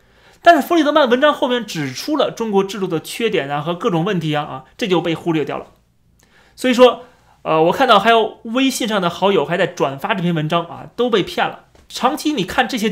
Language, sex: Chinese, male